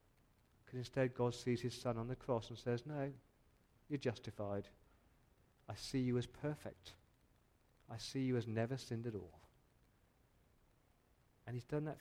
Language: English